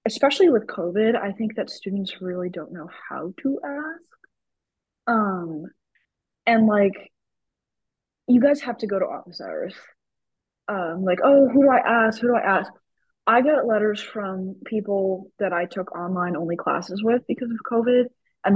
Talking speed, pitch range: 165 wpm, 185-225 Hz